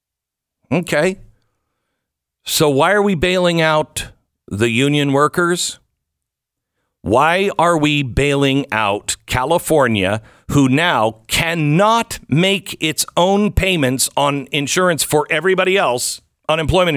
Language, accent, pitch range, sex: English, American, 125-190 Hz, male